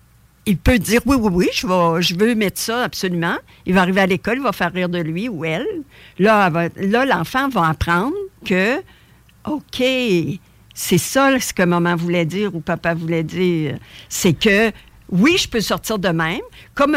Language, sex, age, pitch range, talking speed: French, female, 60-79, 170-210 Hz, 185 wpm